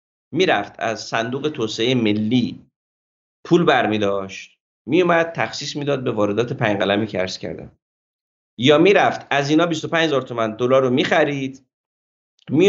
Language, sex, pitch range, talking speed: Persian, male, 110-155 Hz, 155 wpm